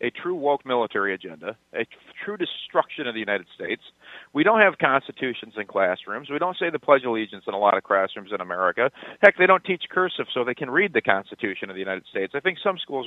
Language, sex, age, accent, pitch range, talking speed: English, male, 40-59, American, 115-175 Hz, 235 wpm